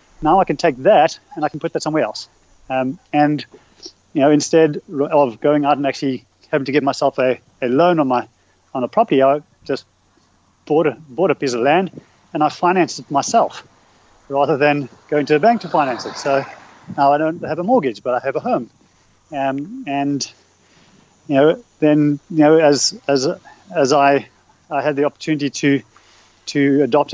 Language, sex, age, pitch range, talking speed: English, male, 30-49, 135-160 Hz, 190 wpm